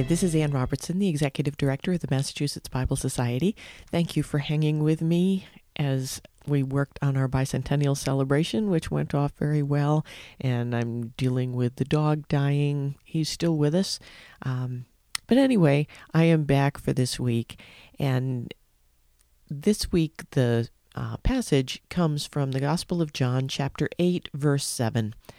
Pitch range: 125-160 Hz